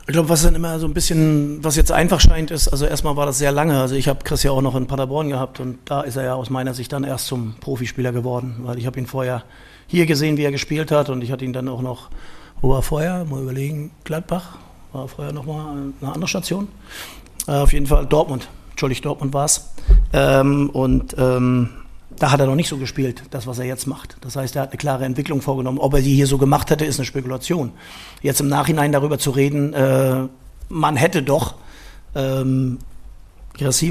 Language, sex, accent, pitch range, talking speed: German, male, German, 130-150 Hz, 225 wpm